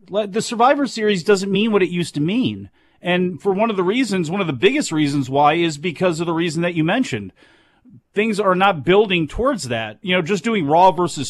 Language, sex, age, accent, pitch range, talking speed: English, male, 40-59, American, 165-205 Hz, 225 wpm